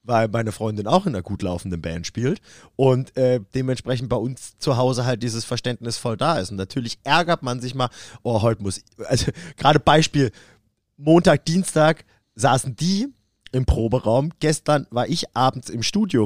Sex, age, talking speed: male, 30-49, 175 wpm